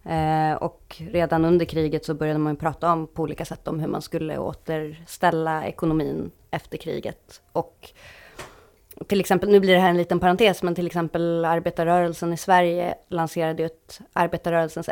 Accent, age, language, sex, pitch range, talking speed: native, 20-39, Swedish, female, 165-205 Hz, 165 wpm